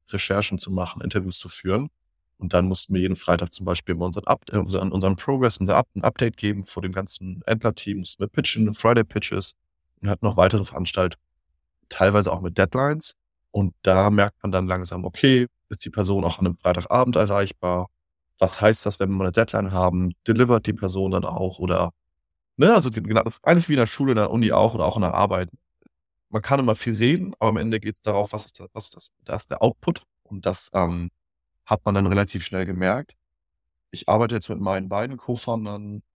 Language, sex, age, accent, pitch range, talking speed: German, male, 20-39, German, 90-105 Hz, 205 wpm